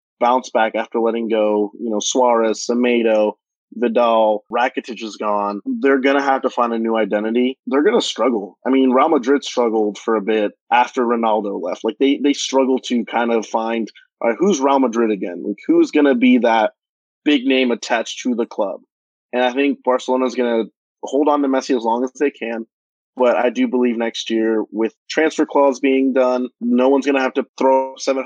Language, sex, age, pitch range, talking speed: English, male, 20-39, 115-135 Hz, 195 wpm